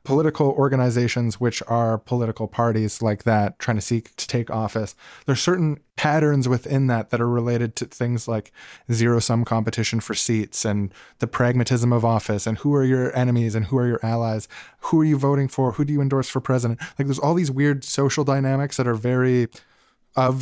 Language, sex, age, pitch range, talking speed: English, male, 20-39, 115-135 Hz, 195 wpm